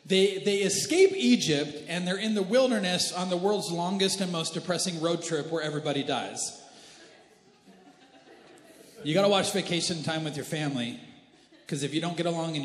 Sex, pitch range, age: male, 155-230 Hz, 40-59